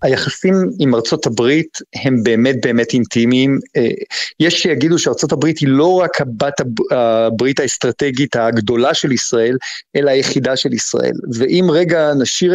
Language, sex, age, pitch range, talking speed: Hebrew, male, 50-69, 140-175 Hz, 135 wpm